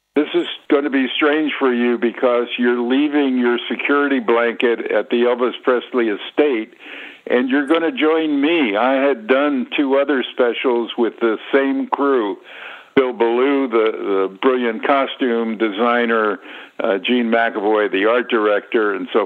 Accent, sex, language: American, male, English